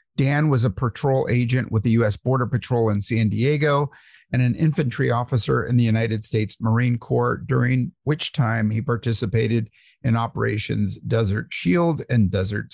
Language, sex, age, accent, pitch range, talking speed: English, male, 50-69, American, 115-145 Hz, 160 wpm